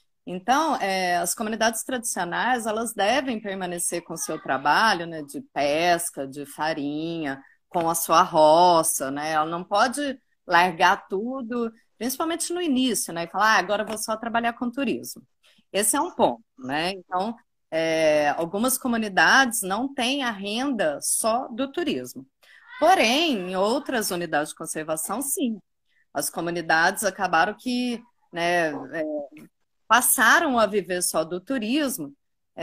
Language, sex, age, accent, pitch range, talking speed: Portuguese, female, 30-49, Brazilian, 165-255 Hz, 130 wpm